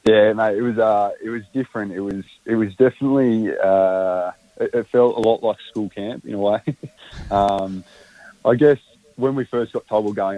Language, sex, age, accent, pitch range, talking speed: English, male, 20-39, Australian, 95-110 Hz, 210 wpm